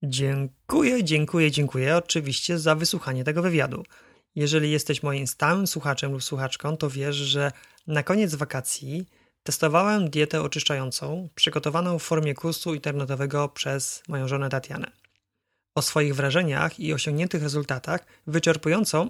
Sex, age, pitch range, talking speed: male, 30-49, 140-170 Hz, 125 wpm